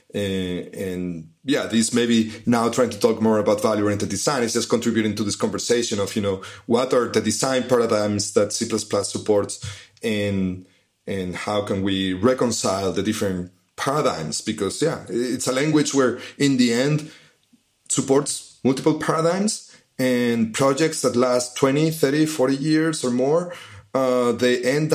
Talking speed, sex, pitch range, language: 155 wpm, male, 110-140 Hz, English